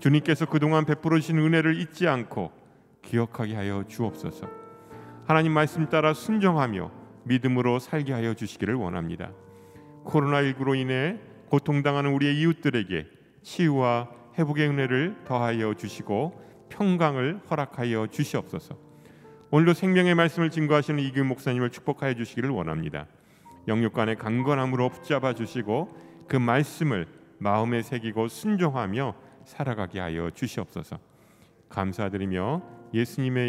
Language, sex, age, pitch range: Korean, male, 40-59, 100-145 Hz